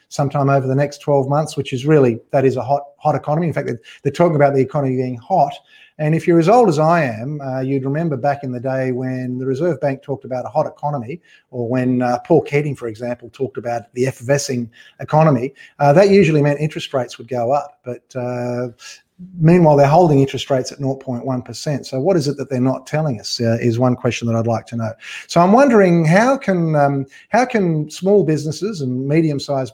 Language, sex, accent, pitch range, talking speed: English, male, Australian, 130-155 Hz, 220 wpm